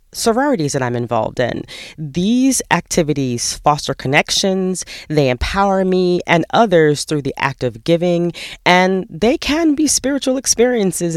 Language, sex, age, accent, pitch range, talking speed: English, female, 30-49, American, 135-190 Hz, 135 wpm